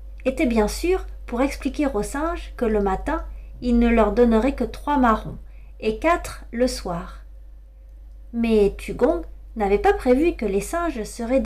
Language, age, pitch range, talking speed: French, 40-59, 200-285 Hz, 155 wpm